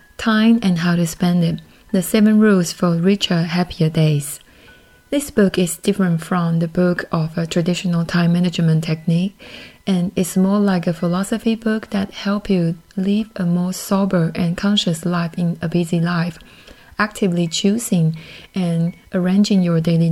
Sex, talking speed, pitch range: female, 160 wpm, 170-205 Hz